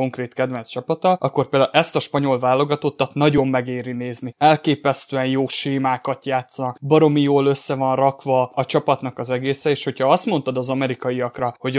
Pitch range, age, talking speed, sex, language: 130-145 Hz, 20-39, 170 wpm, male, Hungarian